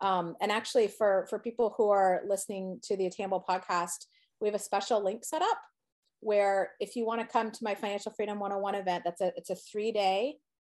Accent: American